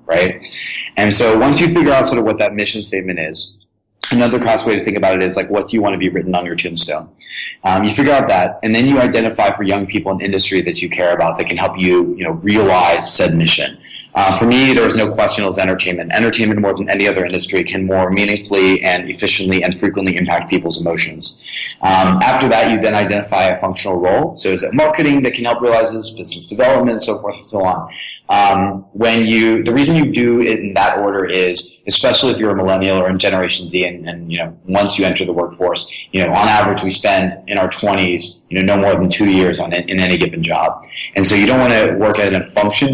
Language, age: English, 30-49